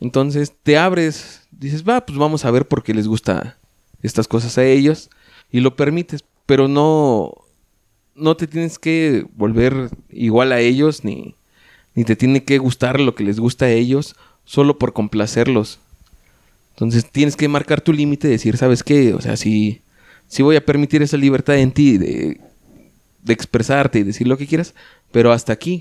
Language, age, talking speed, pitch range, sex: Spanish, 30-49, 185 wpm, 115-150 Hz, male